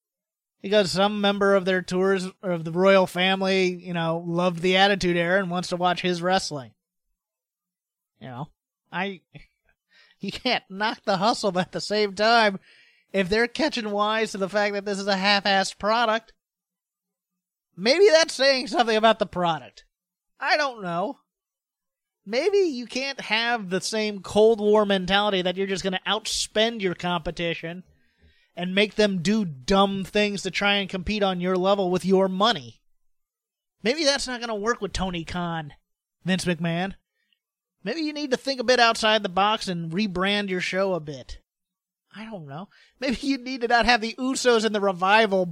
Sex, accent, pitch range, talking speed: male, American, 180-225 Hz, 175 wpm